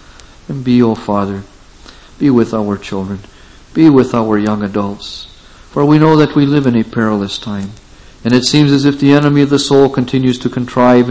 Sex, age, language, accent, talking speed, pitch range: male, 50-69, English, American, 200 wpm, 105-130 Hz